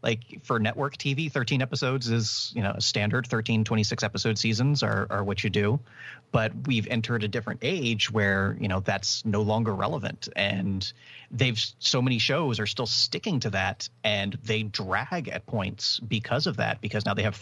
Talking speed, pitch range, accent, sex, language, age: 190 wpm, 105-130 Hz, American, male, English, 30-49